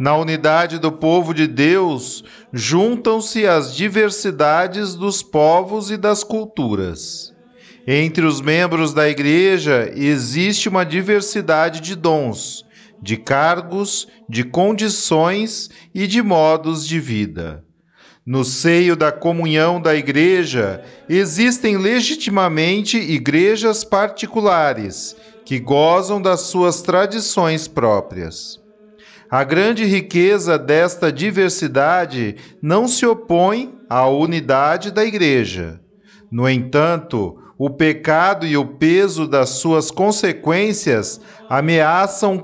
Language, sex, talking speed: Portuguese, male, 100 wpm